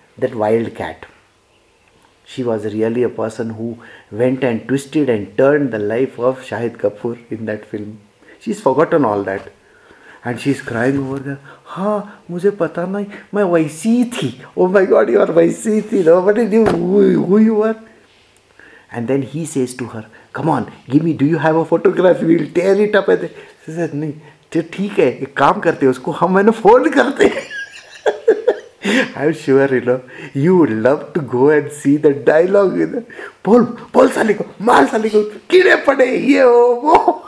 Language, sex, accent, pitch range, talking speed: English, male, Indian, 125-185 Hz, 140 wpm